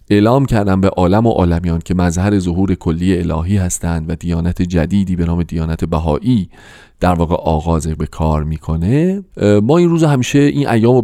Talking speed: 170 wpm